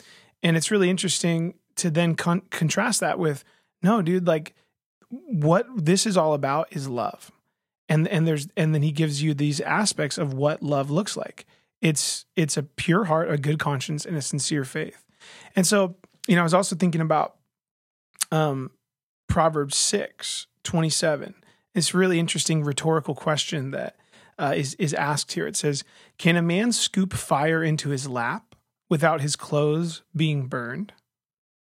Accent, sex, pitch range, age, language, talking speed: American, male, 150-180 Hz, 30-49, English, 165 wpm